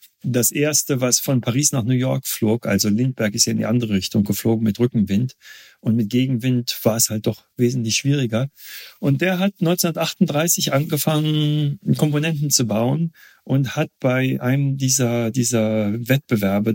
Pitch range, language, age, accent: 110-140 Hz, German, 40-59, German